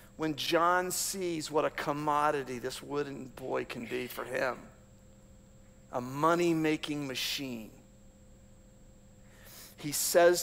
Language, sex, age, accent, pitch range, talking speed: English, male, 50-69, American, 145-215 Hz, 105 wpm